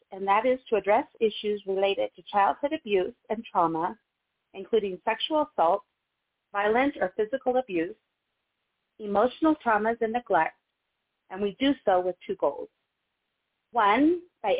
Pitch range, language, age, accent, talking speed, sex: 190-245 Hz, English, 30-49, American, 130 wpm, female